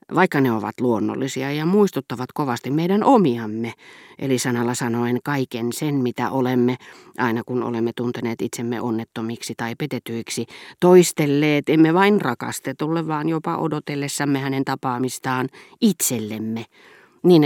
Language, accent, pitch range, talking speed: Finnish, native, 120-165 Hz, 120 wpm